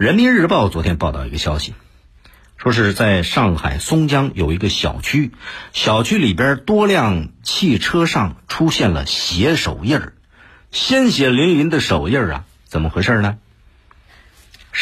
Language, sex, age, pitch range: Chinese, male, 50-69, 85-135 Hz